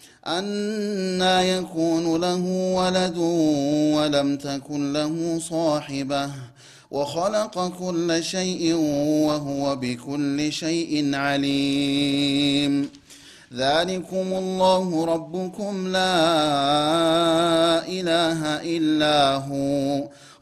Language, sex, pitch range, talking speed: Amharic, male, 145-175 Hz, 65 wpm